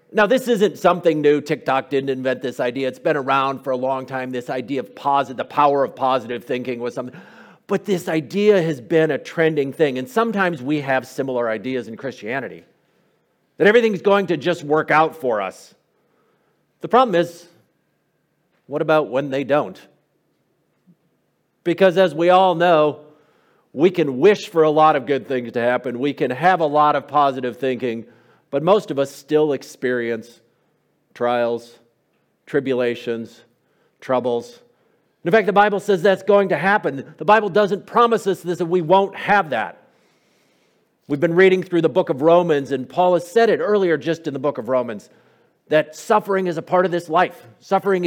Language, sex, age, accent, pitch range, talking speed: English, male, 50-69, American, 135-180 Hz, 175 wpm